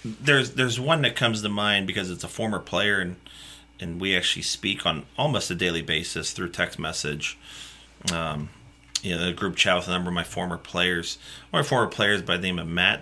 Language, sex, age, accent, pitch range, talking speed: English, male, 30-49, American, 85-100 Hz, 220 wpm